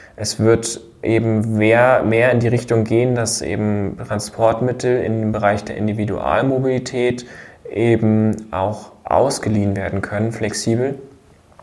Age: 20-39